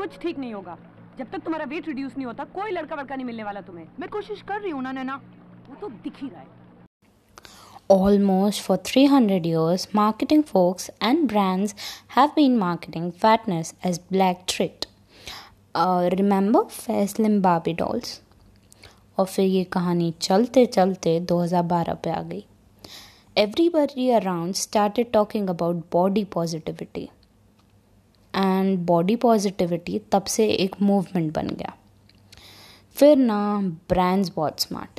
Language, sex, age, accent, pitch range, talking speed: Hindi, female, 20-39, native, 165-225 Hz, 70 wpm